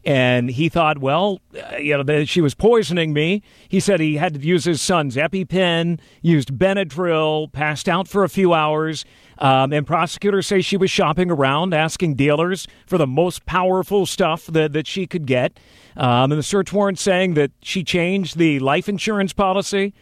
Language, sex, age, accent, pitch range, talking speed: English, male, 50-69, American, 150-185 Hz, 190 wpm